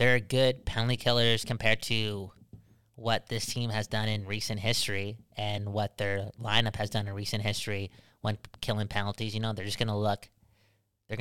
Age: 20-39